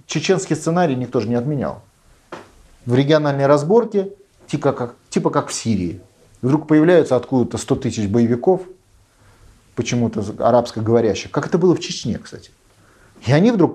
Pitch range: 110-150 Hz